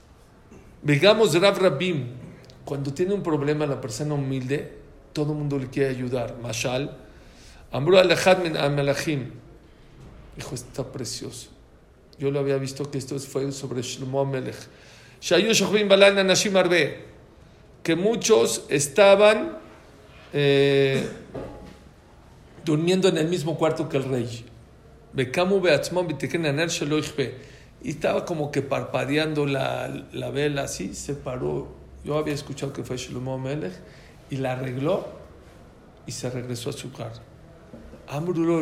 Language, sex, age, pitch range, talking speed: English, male, 50-69, 135-180 Hz, 120 wpm